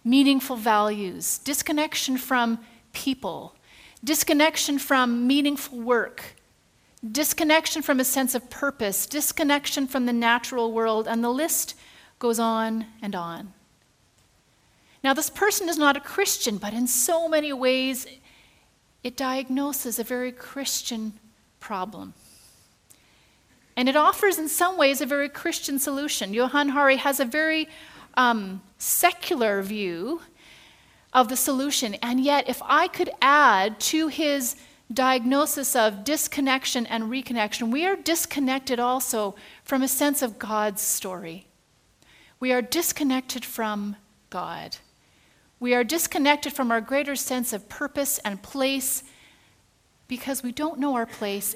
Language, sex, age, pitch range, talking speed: English, female, 40-59, 230-290 Hz, 130 wpm